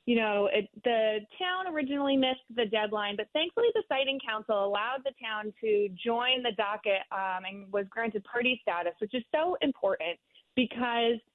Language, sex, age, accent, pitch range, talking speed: English, female, 20-39, American, 195-250 Hz, 165 wpm